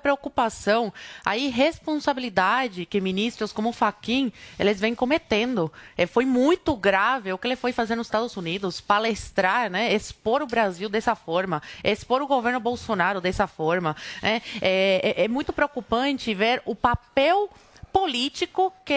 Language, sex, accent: Portuguese, female, Brazilian